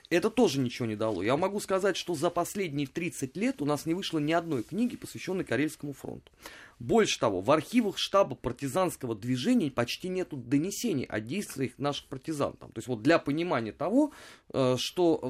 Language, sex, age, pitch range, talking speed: Russian, male, 30-49, 125-195 Hz, 175 wpm